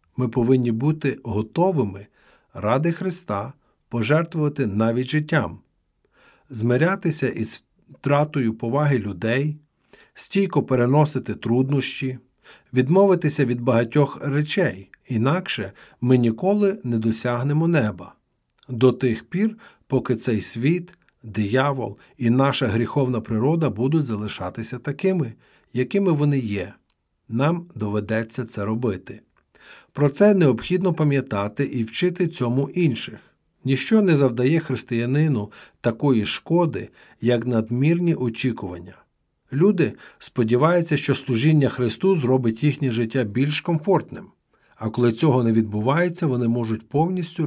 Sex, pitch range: male, 115-150 Hz